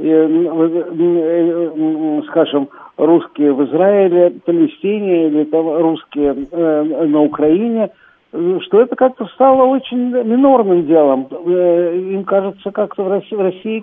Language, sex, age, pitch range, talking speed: Russian, male, 60-79, 160-210 Hz, 115 wpm